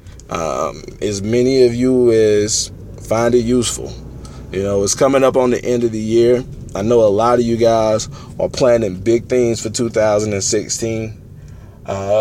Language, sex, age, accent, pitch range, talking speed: English, male, 20-39, American, 105-125 Hz, 160 wpm